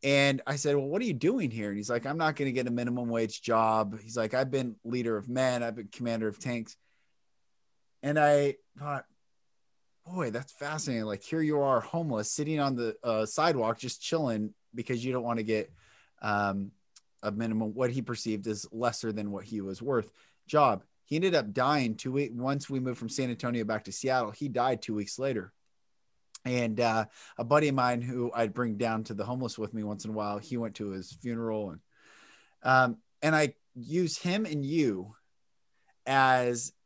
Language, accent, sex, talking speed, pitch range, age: English, American, male, 200 wpm, 110-140 Hz, 20-39